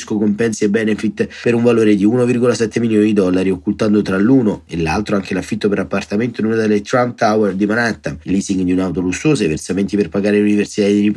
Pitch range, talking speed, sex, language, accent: 100-125 Hz, 210 wpm, male, Italian, native